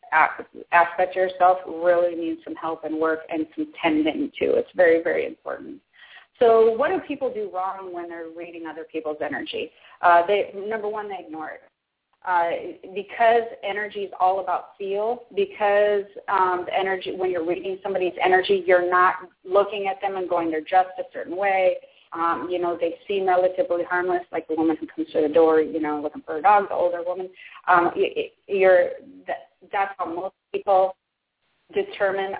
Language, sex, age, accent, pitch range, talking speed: English, female, 30-49, American, 175-210 Hz, 180 wpm